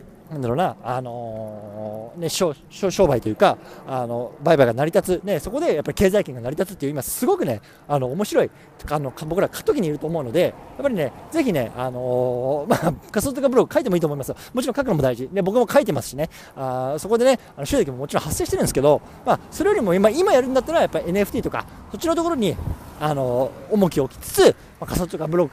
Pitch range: 125-190 Hz